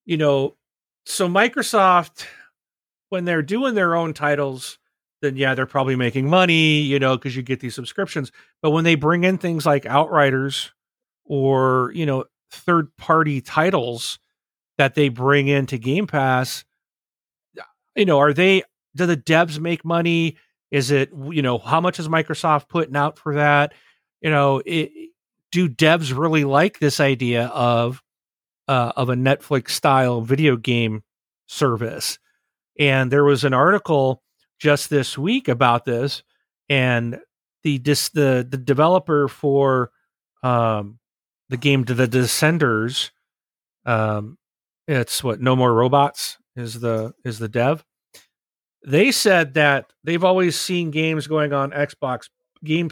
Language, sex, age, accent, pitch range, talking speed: English, male, 40-59, American, 130-160 Hz, 145 wpm